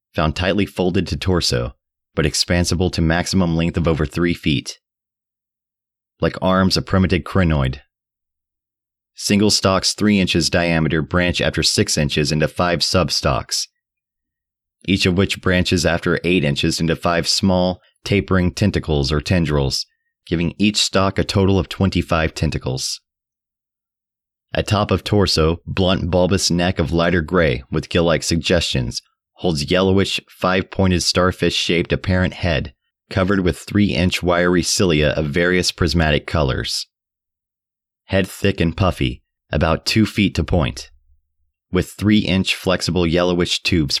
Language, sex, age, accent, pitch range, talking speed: English, male, 30-49, American, 80-95 Hz, 130 wpm